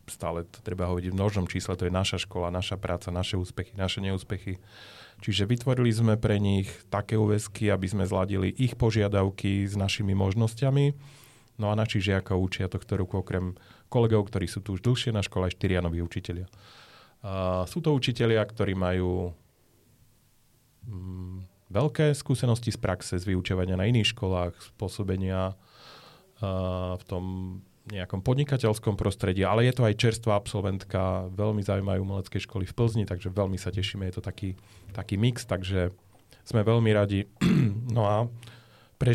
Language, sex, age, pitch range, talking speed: Slovak, male, 30-49, 90-110 Hz, 160 wpm